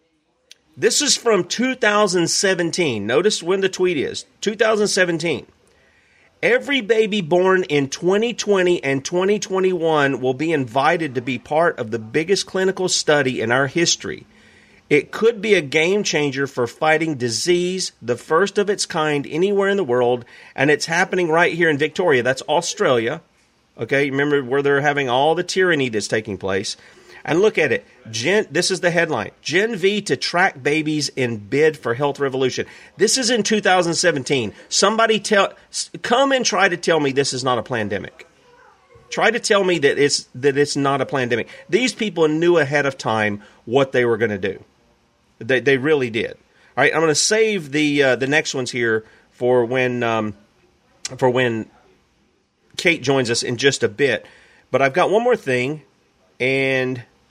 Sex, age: male, 40-59